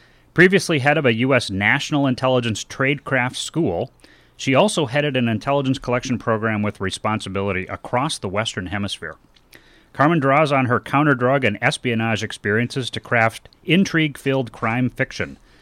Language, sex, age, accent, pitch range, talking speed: English, male, 30-49, American, 110-140 Hz, 135 wpm